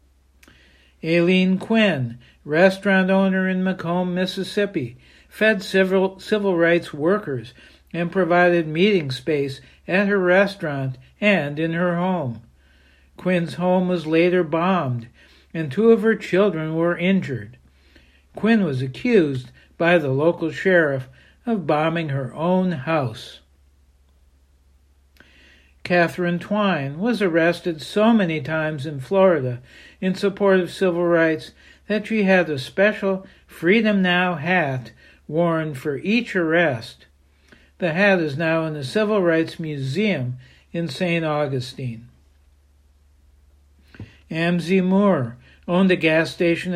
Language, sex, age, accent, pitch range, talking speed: English, male, 60-79, American, 130-190 Hz, 115 wpm